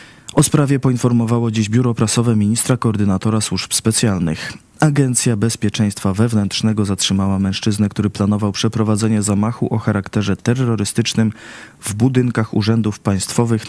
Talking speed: 115 wpm